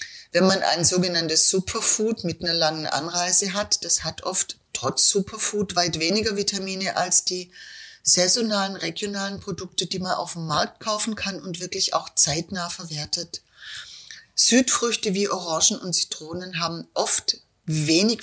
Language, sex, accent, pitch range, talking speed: German, female, German, 175-210 Hz, 140 wpm